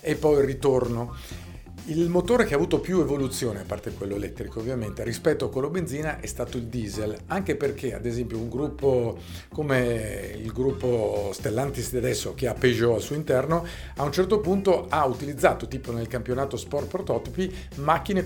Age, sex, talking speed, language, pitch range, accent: 50-69, male, 180 wpm, Italian, 120-155 Hz, native